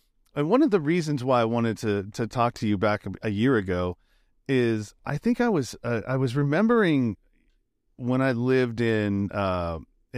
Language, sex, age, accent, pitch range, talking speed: English, male, 40-59, American, 105-125 Hz, 185 wpm